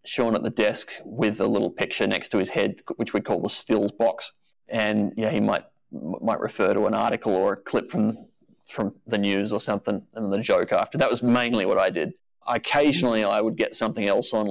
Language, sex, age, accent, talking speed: English, male, 30-49, Australian, 220 wpm